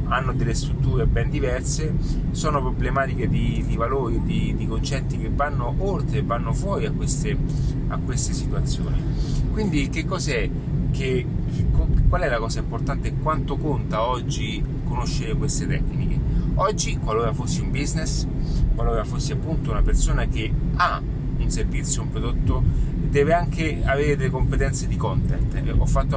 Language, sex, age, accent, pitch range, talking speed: Italian, male, 30-49, native, 125-145 Hz, 145 wpm